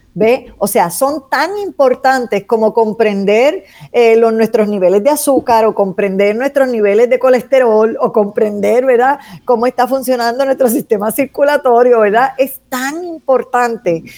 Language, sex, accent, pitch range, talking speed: Spanish, female, American, 205-265 Hz, 140 wpm